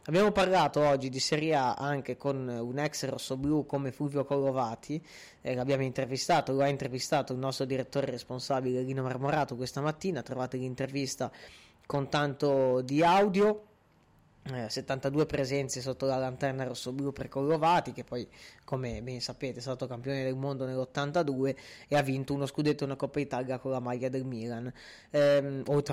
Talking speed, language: 160 wpm, Italian